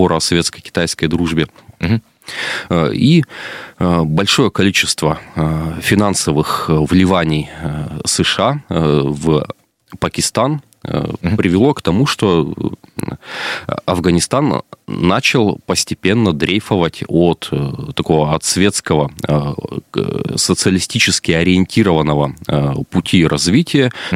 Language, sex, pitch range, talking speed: Russian, male, 75-95 Hz, 65 wpm